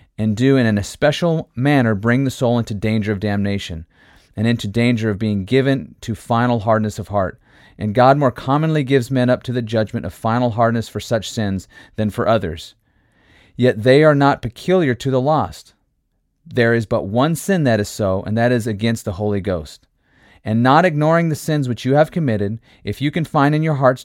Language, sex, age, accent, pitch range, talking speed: English, male, 30-49, American, 110-135 Hz, 205 wpm